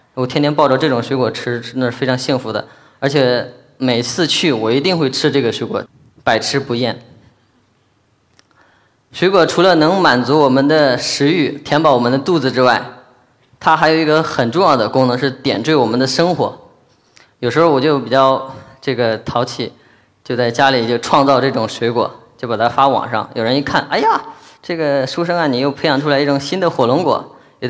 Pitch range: 125-145 Hz